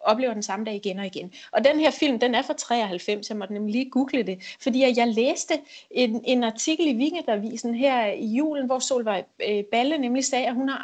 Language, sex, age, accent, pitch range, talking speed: Danish, female, 30-49, native, 210-265 Hz, 220 wpm